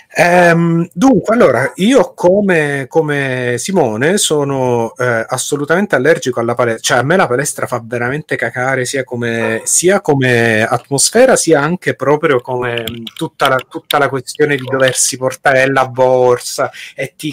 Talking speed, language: 150 wpm, Italian